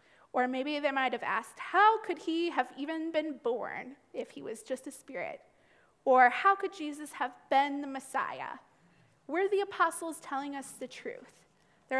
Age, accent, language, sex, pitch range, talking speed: 20-39, American, English, female, 250-320 Hz, 175 wpm